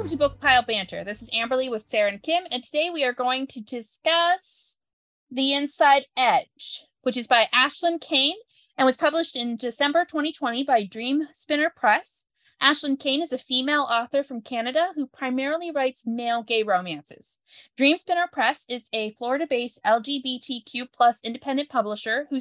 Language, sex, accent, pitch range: English, female, American, 225-290 Hz